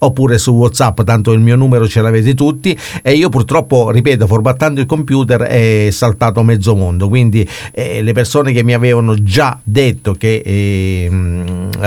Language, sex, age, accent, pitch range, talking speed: Italian, male, 50-69, native, 105-130 Hz, 165 wpm